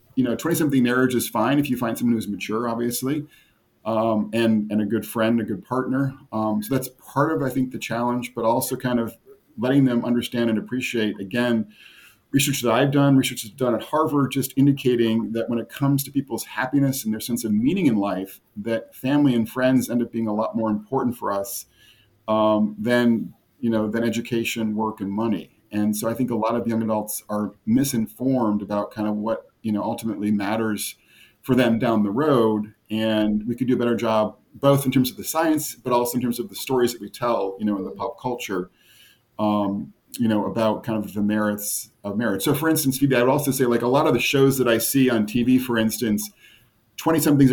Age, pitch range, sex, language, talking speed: 40-59, 110-130 Hz, male, English, 220 wpm